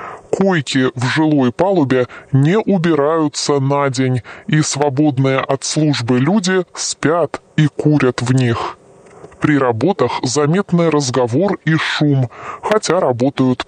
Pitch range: 130-160 Hz